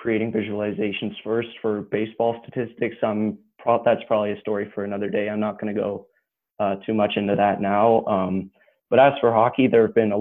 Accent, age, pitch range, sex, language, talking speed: American, 20-39, 105-115 Hz, male, English, 205 wpm